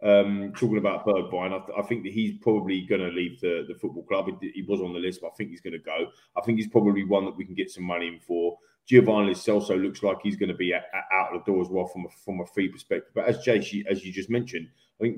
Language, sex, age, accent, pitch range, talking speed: English, male, 20-39, British, 95-120 Hz, 300 wpm